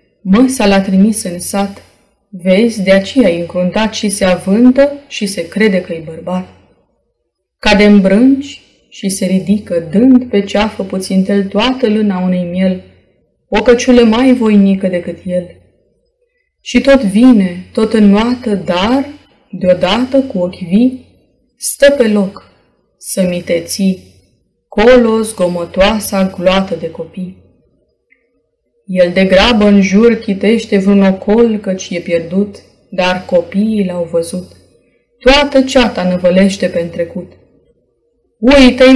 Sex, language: female, Romanian